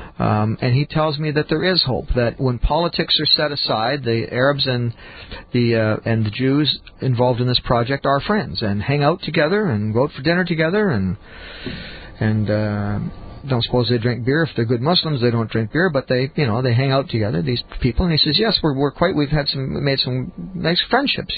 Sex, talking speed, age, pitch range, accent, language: male, 220 wpm, 50-69, 115-150 Hz, American, English